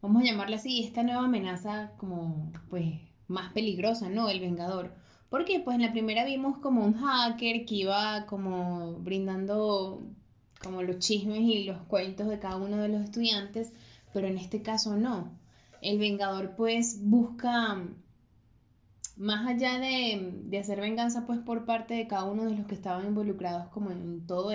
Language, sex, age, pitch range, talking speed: Spanish, female, 10-29, 185-225 Hz, 170 wpm